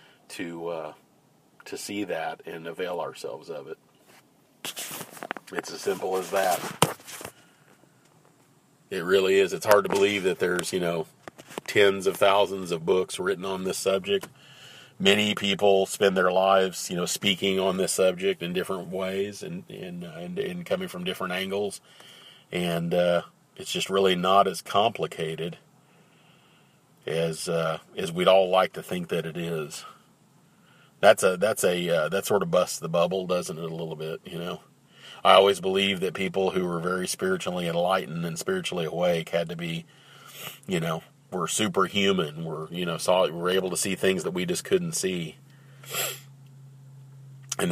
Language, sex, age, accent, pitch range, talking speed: English, male, 40-59, American, 90-145 Hz, 165 wpm